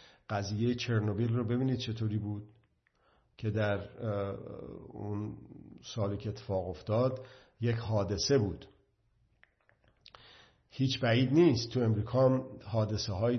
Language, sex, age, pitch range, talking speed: Persian, male, 50-69, 105-120 Hz, 110 wpm